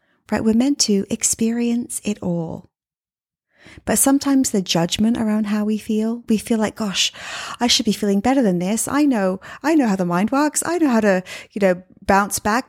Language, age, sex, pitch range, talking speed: English, 30-49, female, 195-270 Hz, 200 wpm